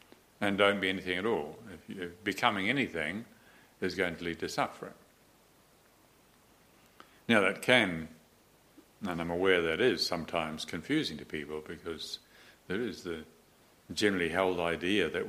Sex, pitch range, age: male, 85-100 Hz, 60-79